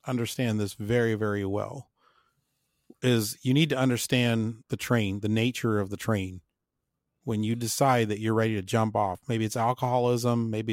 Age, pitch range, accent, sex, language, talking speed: 30-49, 105-125 Hz, American, male, English, 170 wpm